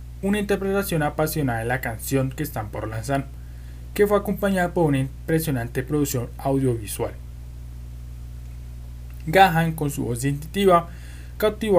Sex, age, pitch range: male, 20-39, 115-170 Hz